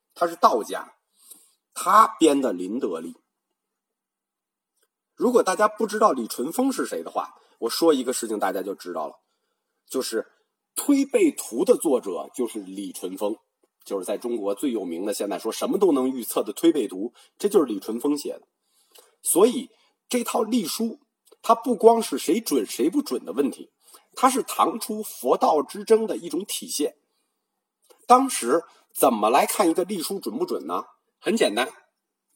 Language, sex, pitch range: Chinese, male, 215-360 Hz